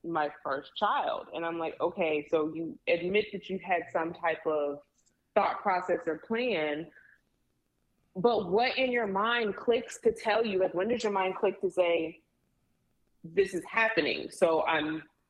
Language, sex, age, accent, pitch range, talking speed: English, female, 20-39, American, 175-230 Hz, 165 wpm